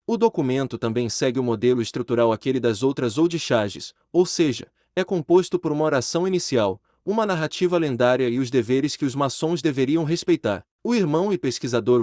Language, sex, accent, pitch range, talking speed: Portuguese, male, Brazilian, 125-170 Hz, 175 wpm